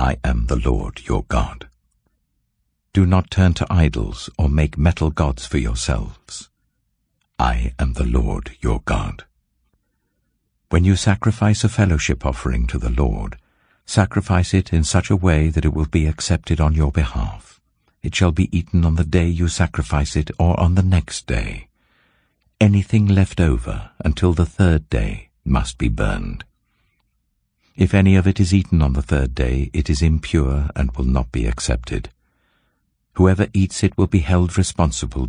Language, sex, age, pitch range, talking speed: English, male, 60-79, 70-95 Hz, 165 wpm